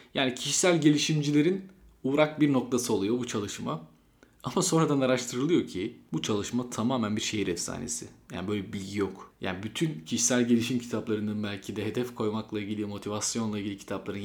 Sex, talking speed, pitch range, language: male, 155 wpm, 105-125 Hz, Turkish